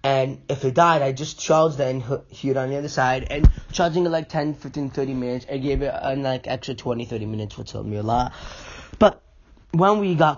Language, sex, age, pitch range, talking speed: English, male, 20-39, 115-150 Hz, 235 wpm